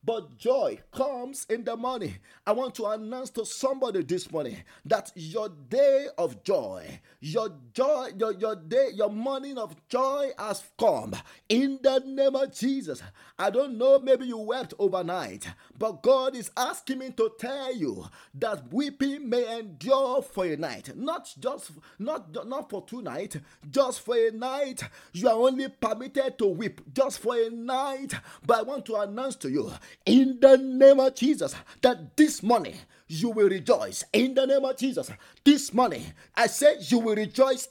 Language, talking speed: English, 170 wpm